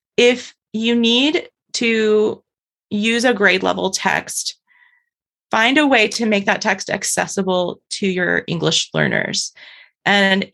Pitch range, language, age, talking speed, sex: 195-235 Hz, English, 30-49, 120 wpm, female